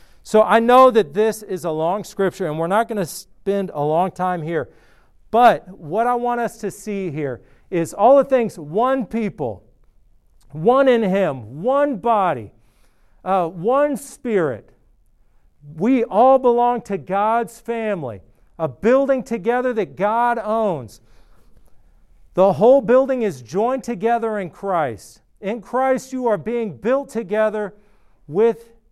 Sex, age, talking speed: male, 50-69, 145 wpm